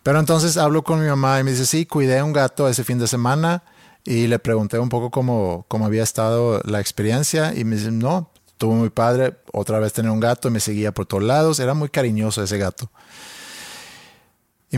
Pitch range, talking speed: 110-135 Hz, 210 wpm